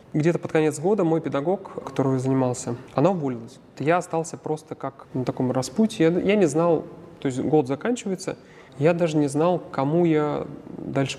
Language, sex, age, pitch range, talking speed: Russian, male, 30-49, 135-165 Hz, 170 wpm